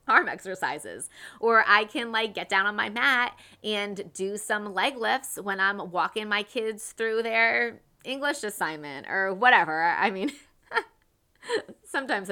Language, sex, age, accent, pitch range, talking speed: English, female, 20-39, American, 190-245 Hz, 145 wpm